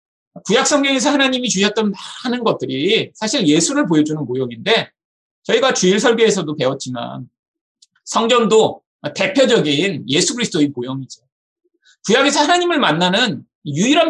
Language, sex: Korean, male